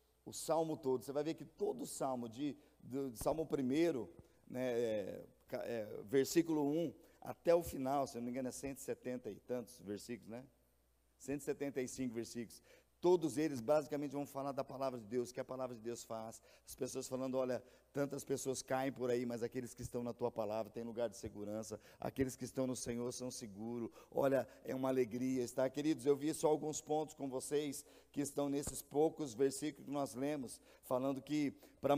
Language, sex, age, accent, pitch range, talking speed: Portuguese, male, 50-69, Brazilian, 130-155 Hz, 190 wpm